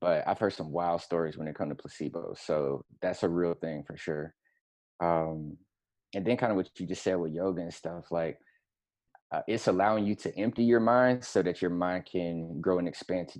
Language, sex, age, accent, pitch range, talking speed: English, male, 20-39, American, 85-95 Hz, 220 wpm